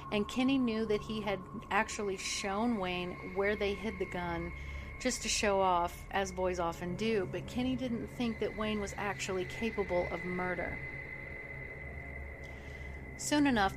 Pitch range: 170-210 Hz